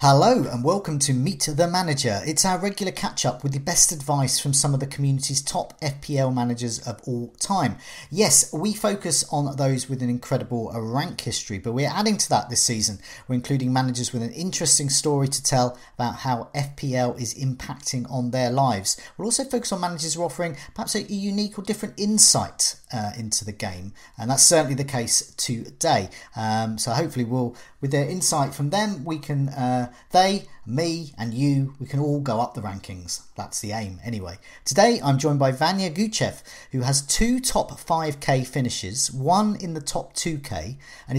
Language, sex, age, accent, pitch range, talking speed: English, male, 40-59, British, 120-160 Hz, 190 wpm